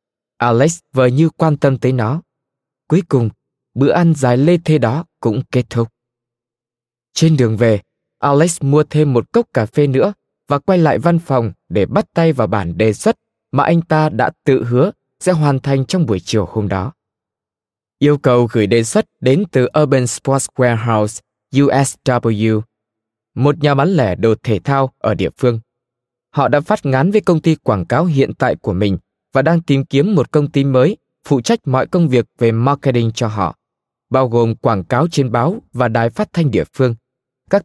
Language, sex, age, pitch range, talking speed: Vietnamese, male, 20-39, 115-150 Hz, 190 wpm